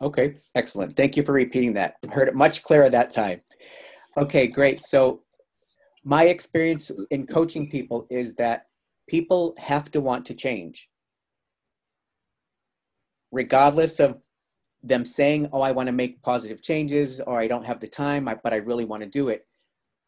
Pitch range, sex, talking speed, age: 120-150 Hz, male, 155 wpm, 40-59